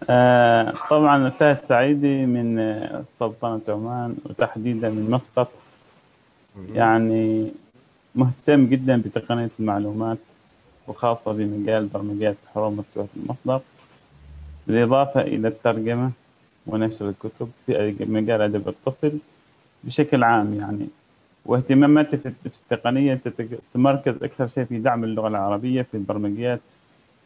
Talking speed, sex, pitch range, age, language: 95 wpm, male, 110-130 Hz, 20-39, Arabic